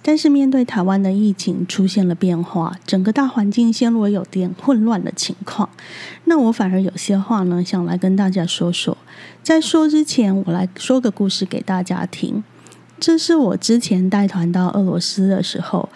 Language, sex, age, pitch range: Chinese, female, 20-39, 185-230 Hz